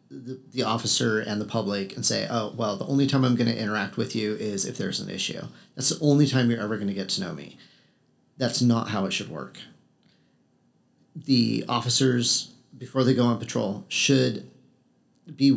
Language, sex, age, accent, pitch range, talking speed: English, male, 40-59, American, 110-130 Hz, 195 wpm